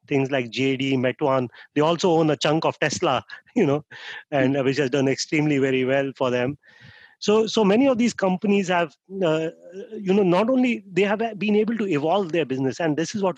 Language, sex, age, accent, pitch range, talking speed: English, male, 30-49, Indian, 130-160 Hz, 205 wpm